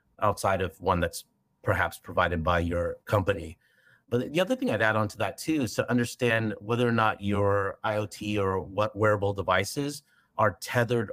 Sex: male